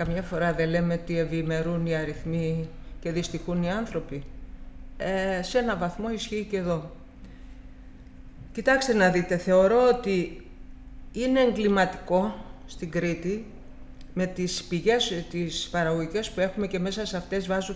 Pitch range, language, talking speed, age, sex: 170-240 Hz, Greek, 135 wpm, 50-69, female